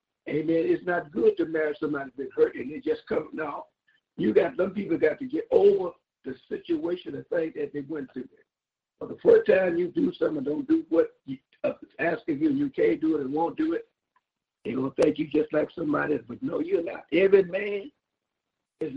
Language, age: English, 60-79